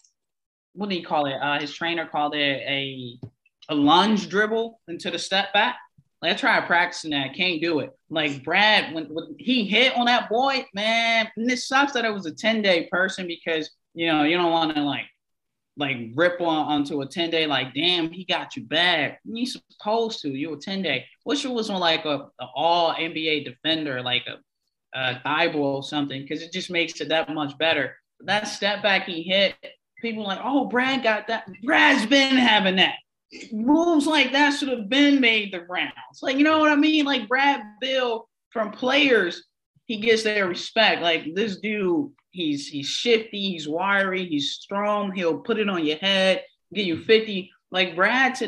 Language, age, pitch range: English, 20-39, 160-225 Hz